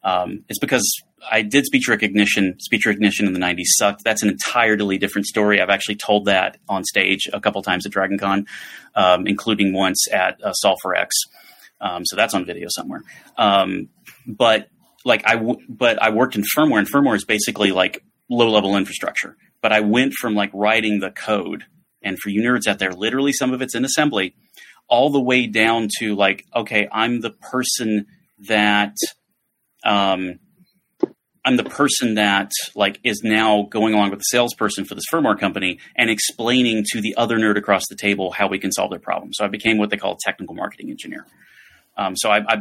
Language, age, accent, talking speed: English, 30-49, American, 190 wpm